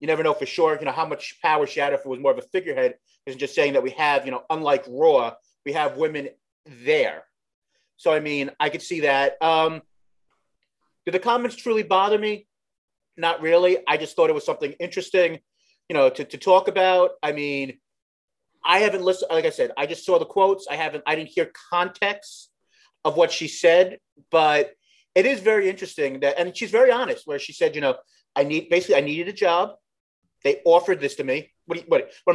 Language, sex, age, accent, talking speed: English, male, 30-49, American, 215 wpm